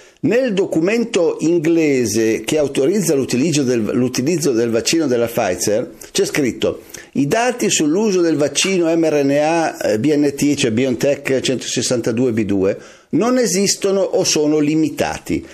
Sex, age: male, 50-69